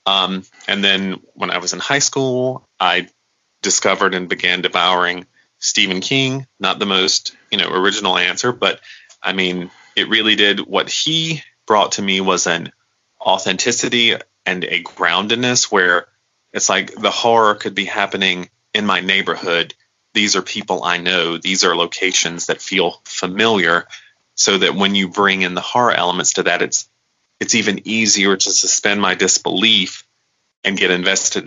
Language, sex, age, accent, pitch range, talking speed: English, male, 30-49, American, 90-105 Hz, 160 wpm